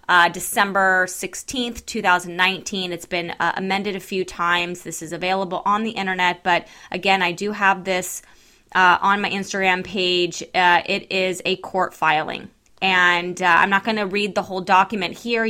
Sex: female